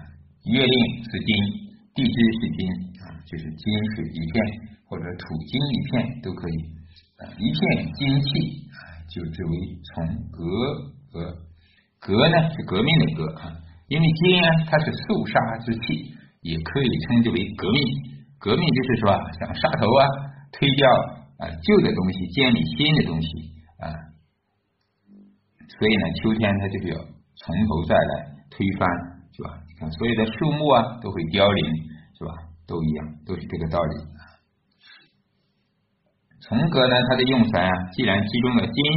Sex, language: male, Chinese